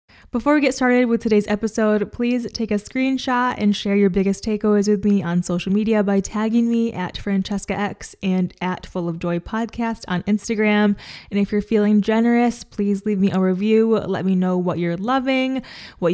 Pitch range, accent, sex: 180-215 Hz, American, female